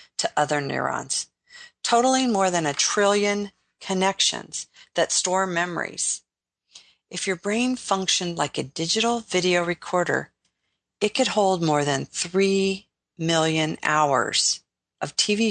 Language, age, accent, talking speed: English, 50-69, American, 120 wpm